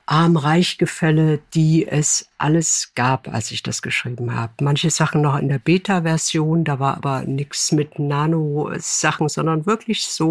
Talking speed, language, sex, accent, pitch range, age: 145 wpm, German, female, German, 145-175 Hz, 60-79